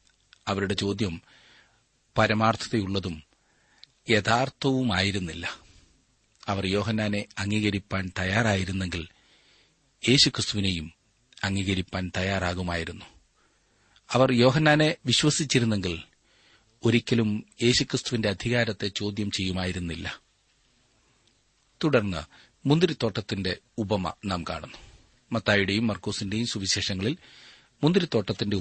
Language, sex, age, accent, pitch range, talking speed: Malayalam, male, 40-59, native, 100-120 Hz, 50 wpm